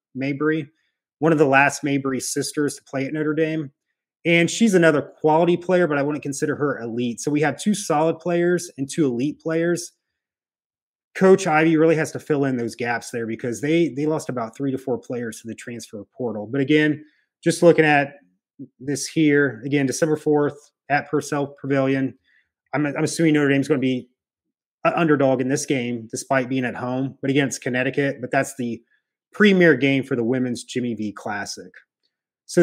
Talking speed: 190 wpm